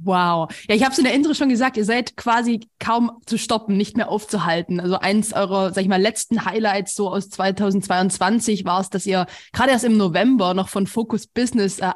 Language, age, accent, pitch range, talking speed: German, 20-39, German, 195-255 Hz, 215 wpm